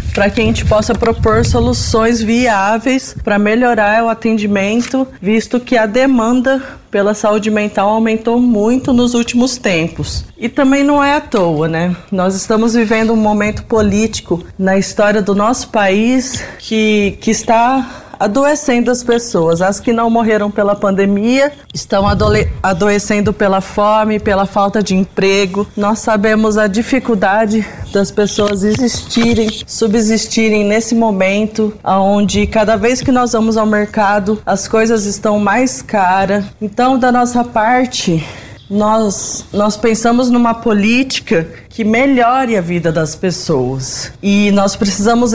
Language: Portuguese